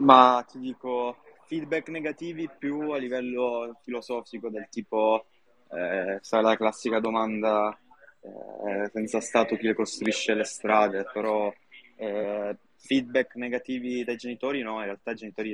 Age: 20-39